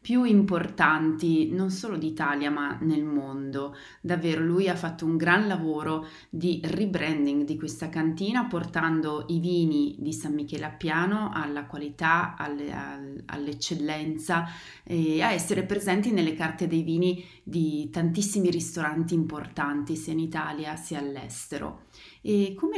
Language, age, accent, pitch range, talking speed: Italian, 30-49, native, 155-185 Hz, 125 wpm